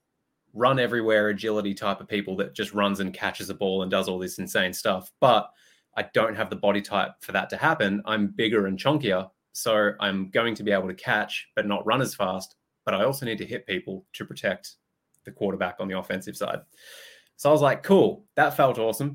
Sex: male